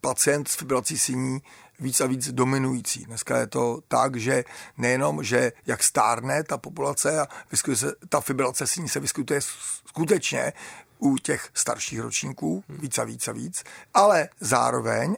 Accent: native